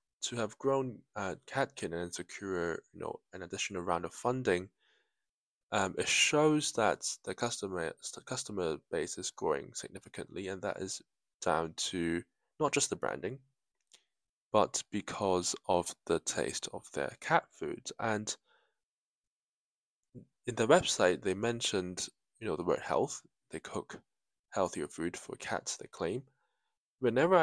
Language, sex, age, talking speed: English, male, 10-29, 140 wpm